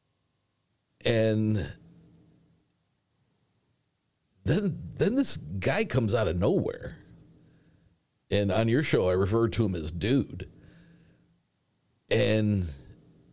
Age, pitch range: 50-69, 90-150 Hz